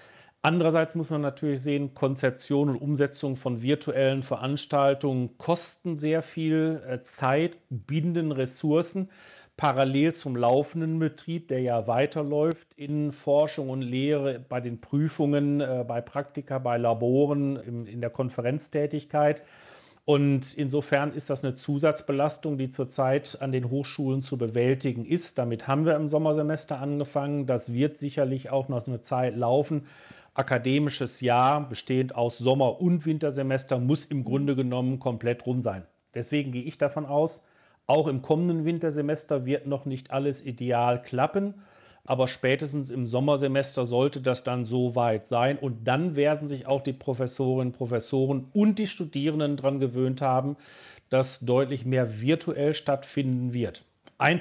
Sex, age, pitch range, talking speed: male, 40-59, 130-150 Hz, 140 wpm